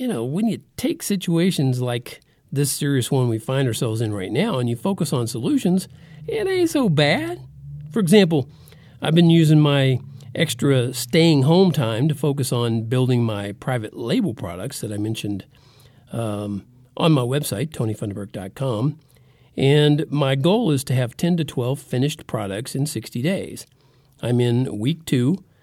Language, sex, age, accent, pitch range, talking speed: English, male, 50-69, American, 120-155 Hz, 160 wpm